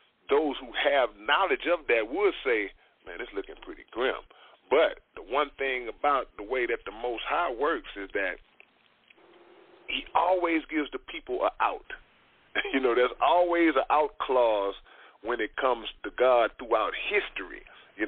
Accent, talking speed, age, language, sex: American, 165 wpm, 40-59, English, male